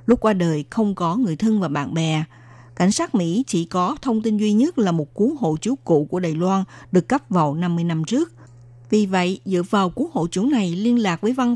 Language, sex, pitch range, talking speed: Vietnamese, female, 165-220 Hz, 240 wpm